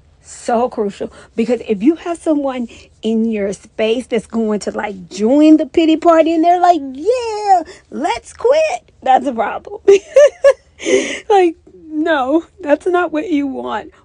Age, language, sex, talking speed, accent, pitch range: 40-59, English, female, 145 wpm, American, 210-320 Hz